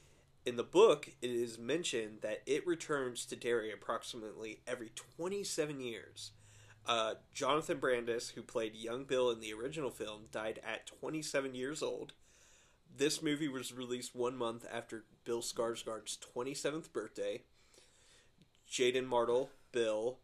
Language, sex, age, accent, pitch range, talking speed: English, male, 30-49, American, 110-135 Hz, 135 wpm